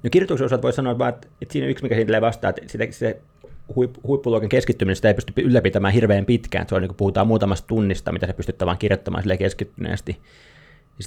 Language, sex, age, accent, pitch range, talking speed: Finnish, male, 20-39, native, 95-110 Hz, 180 wpm